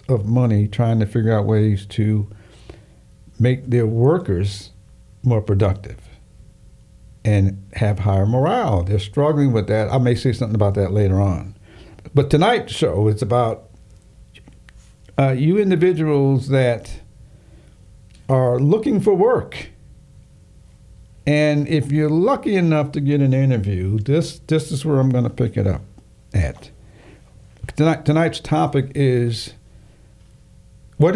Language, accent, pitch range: English, American, 105-150 Hz